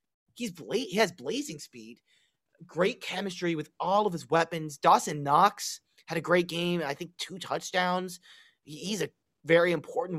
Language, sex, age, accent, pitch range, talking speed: English, male, 30-49, American, 155-205 Hz, 160 wpm